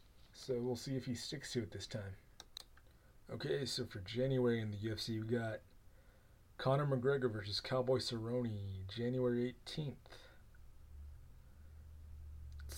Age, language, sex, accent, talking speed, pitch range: 30-49, English, male, American, 125 wpm, 105-130 Hz